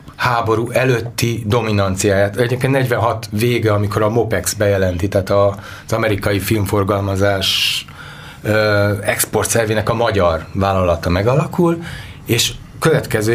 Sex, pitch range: male, 95-130 Hz